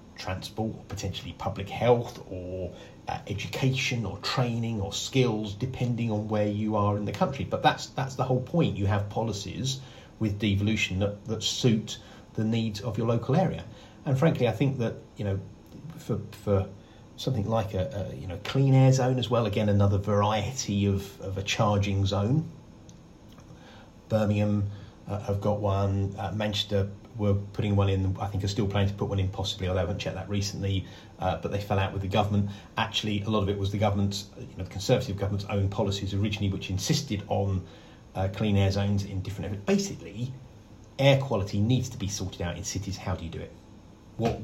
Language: English